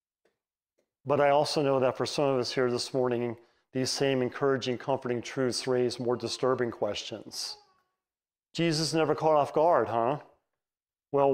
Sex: male